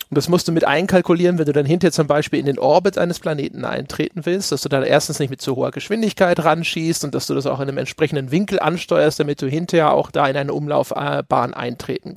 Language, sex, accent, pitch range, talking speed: German, male, German, 145-180 Hz, 235 wpm